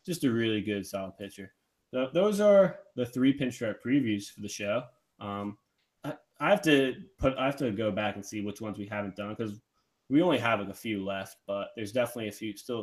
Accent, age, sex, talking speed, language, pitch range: American, 20-39, male, 220 wpm, English, 105-130 Hz